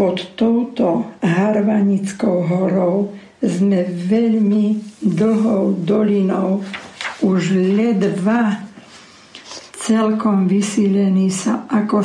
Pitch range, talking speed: 185-215 Hz, 70 wpm